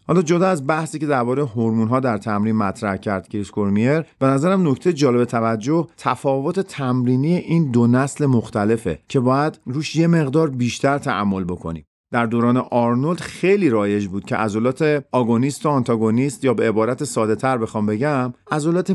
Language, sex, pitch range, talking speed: Persian, male, 110-140 Hz, 160 wpm